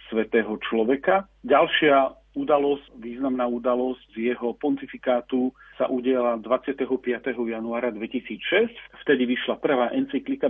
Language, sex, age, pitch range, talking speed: Slovak, male, 50-69, 115-150 Hz, 95 wpm